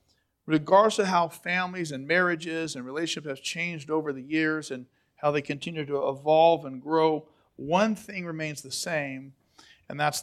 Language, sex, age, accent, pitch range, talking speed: English, male, 40-59, American, 145-185 Hz, 165 wpm